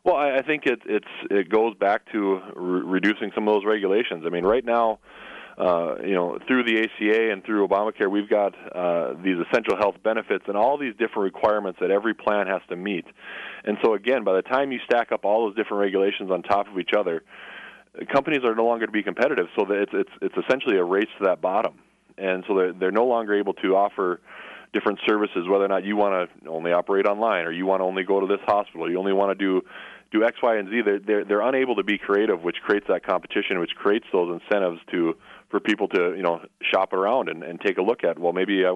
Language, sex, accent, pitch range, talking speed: English, male, American, 95-105 Hz, 240 wpm